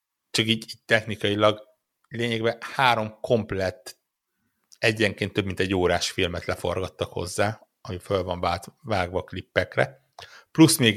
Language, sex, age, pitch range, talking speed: Hungarian, male, 60-79, 100-130 Hz, 120 wpm